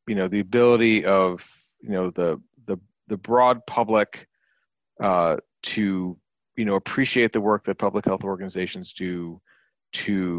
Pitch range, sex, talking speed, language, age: 95-125 Hz, male, 145 wpm, English, 40-59